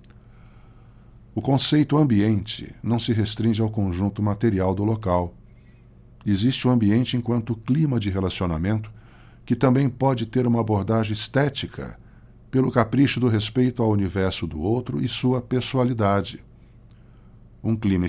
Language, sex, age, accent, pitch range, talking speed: Portuguese, male, 50-69, Brazilian, 95-120 Hz, 125 wpm